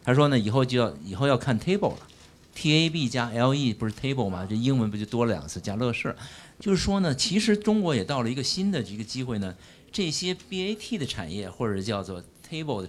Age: 50-69